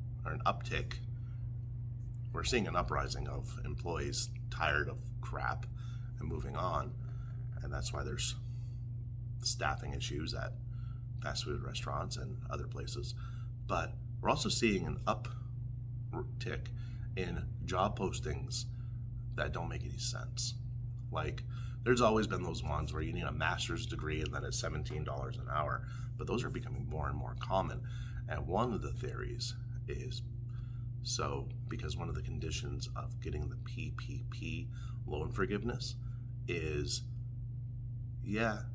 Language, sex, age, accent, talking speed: English, male, 30-49, American, 135 wpm